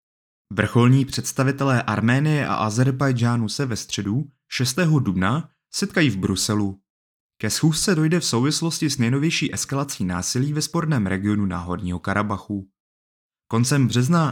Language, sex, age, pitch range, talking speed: Czech, male, 30-49, 100-140 Hz, 120 wpm